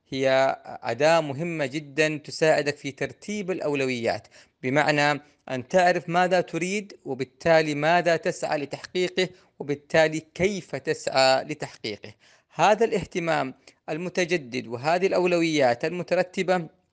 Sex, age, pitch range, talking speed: female, 30-49, 135-170 Hz, 95 wpm